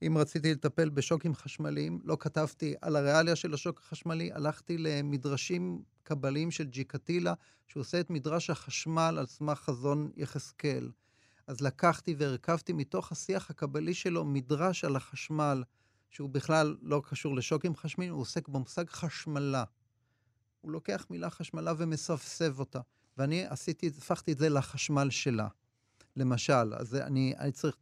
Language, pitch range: Hebrew, 125-160 Hz